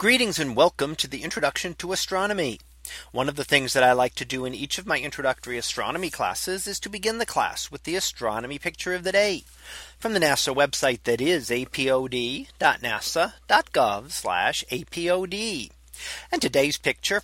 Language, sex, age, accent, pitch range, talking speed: English, male, 40-59, American, 125-175 Hz, 165 wpm